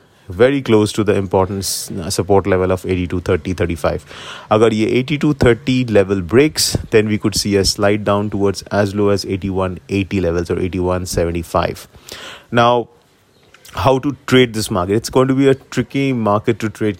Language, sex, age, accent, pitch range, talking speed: English, male, 30-49, Indian, 100-125 Hz, 160 wpm